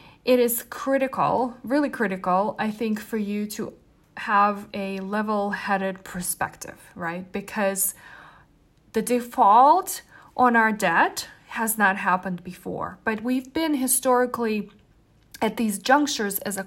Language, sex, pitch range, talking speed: English, female, 195-250 Hz, 120 wpm